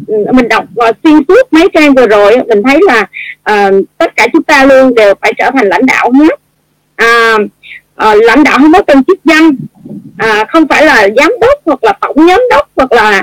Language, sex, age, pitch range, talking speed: Vietnamese, female, 20-39, 215-320 Hz, 215 wpm